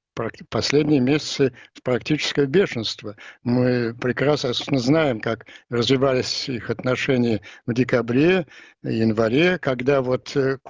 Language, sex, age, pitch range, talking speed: Russian, male, 60-79, 125-150 Hz, 100 wpm